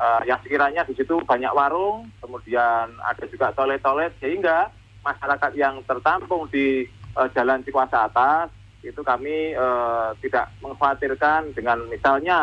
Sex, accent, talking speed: male, native, 135 wpm